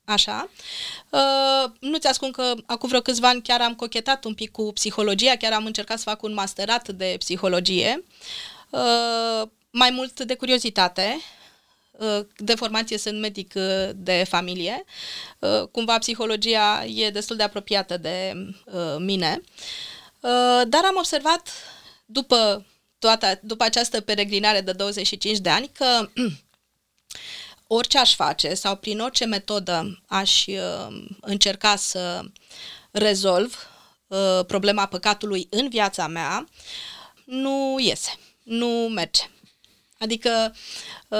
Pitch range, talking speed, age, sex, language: 195-240 Hz, 110 wpm, 20-39, female, Romanian